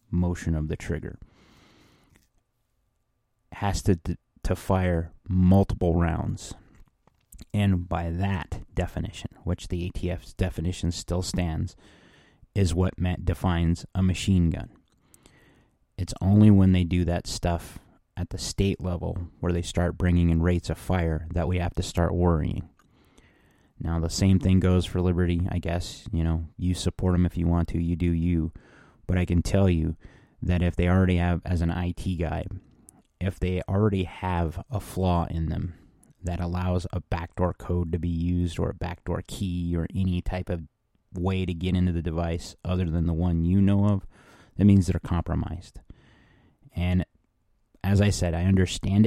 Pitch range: 85-95 Hz